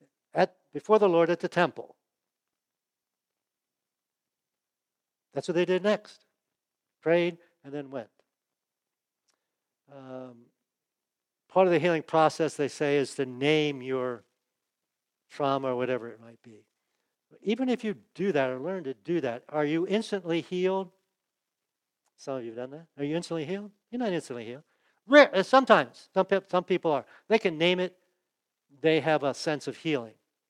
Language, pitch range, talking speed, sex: English, 130-180 Hz, 155 wpm, male